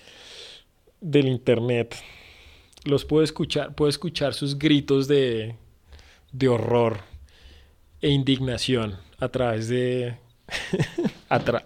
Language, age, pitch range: Spanish, 30-49, 115-145 Hz